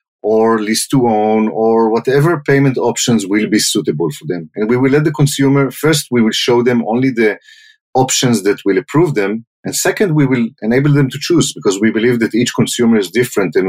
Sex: male